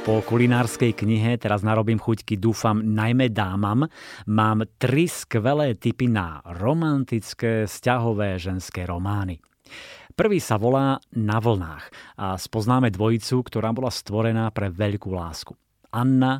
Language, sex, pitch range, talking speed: Slovak, male, 100-125 Hz, 120 wpm